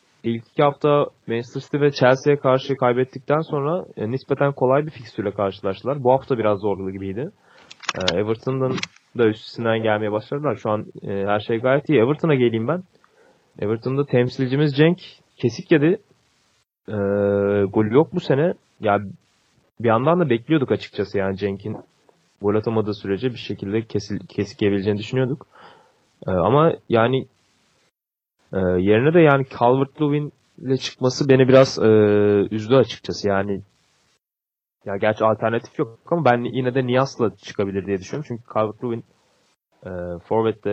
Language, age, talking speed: Turkish, 20-39, 135 wpm